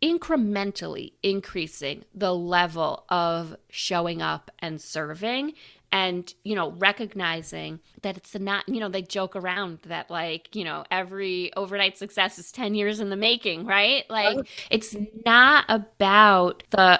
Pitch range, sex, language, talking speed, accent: 180-220 Hz, female, English, 140 wpm, American